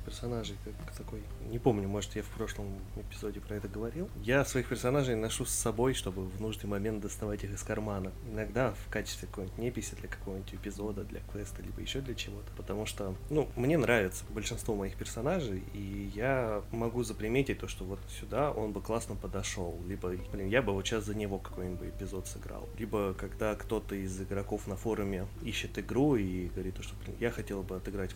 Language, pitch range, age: Russian, 100-115 Hz, 20-39